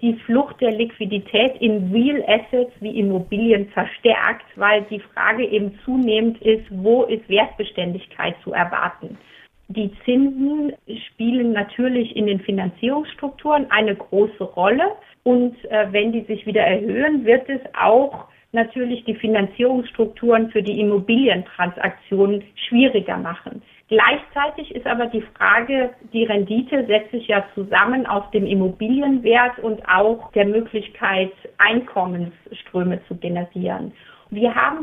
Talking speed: 125 wpm